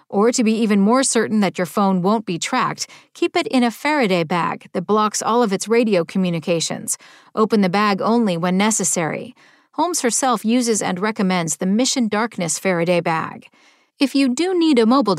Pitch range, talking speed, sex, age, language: 185-245 Hz, 185 wpm, female, 40-59, English